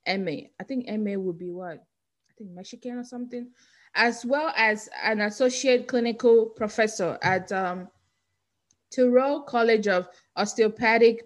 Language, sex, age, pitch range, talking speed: English, female, 20-39, 200-250 Hz, 135 wpm